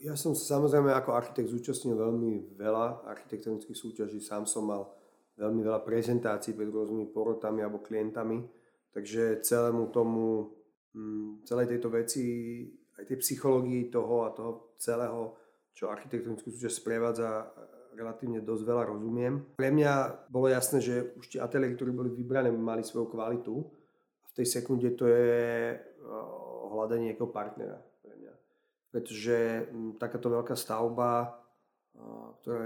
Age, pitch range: 30-49, 115-125 Hz